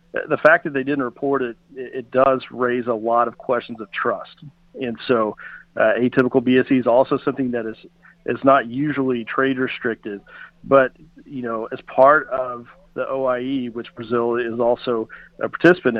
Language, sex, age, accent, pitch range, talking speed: English, male, 50-69, American, 120-160 Hz, 165 wpm